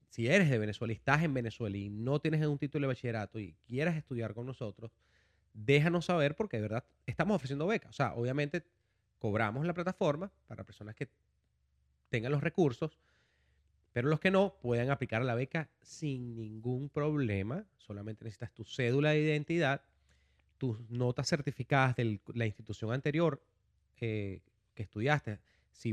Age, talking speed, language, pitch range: 30-49, 155 wpm, Spanish, 110-145 Hz